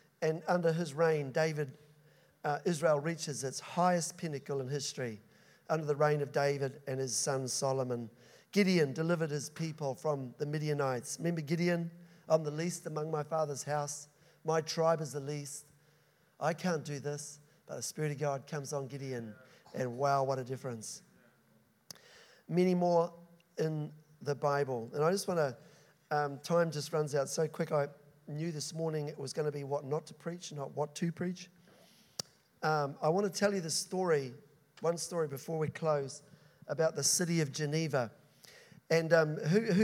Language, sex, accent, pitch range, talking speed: English, male, Australian, 145-170 Hz, 175 wpm